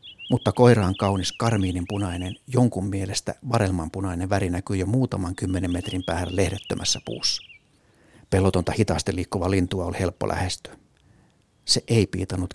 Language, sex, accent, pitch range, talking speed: Finnish, male, native, 95-120 Hz, 135 wpm